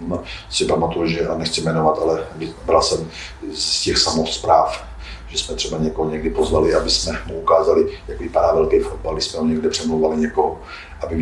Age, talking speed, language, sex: 40-59, 175 wpm, Czech, male